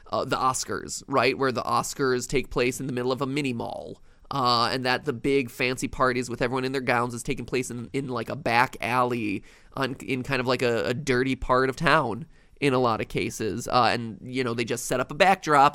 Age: 20-39